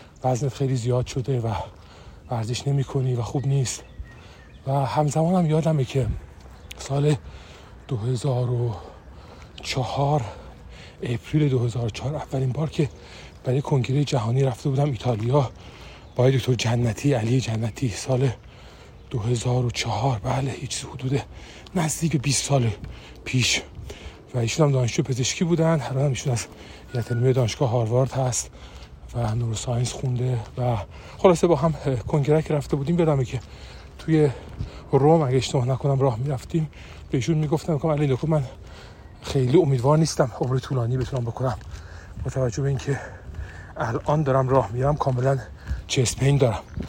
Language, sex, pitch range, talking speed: Persian, male, 105-140 Hz, 125 wpm